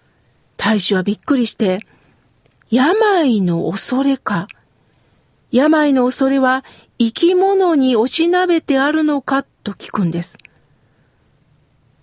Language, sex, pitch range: Japanese, female, 210-295 Hz